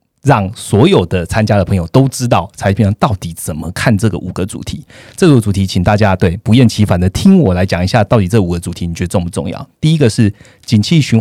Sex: male